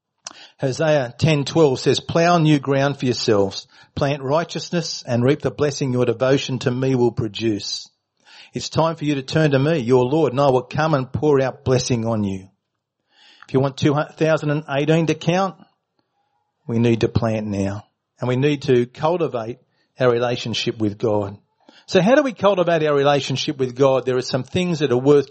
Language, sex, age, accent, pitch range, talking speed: English, male, 40-59, Australian, 125-155 Hz, 180 wpm